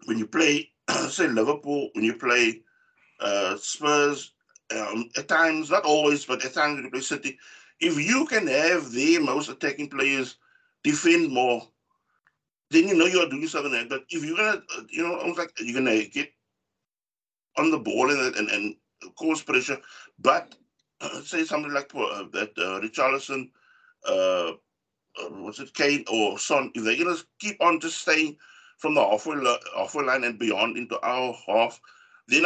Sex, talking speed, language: male, 175 wpm, English